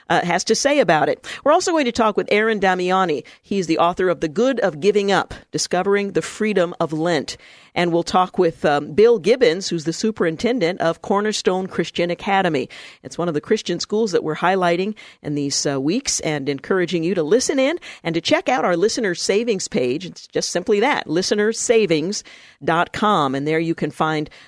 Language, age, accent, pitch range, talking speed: English, 50-69, American, 155-205 Hz, 195 wpm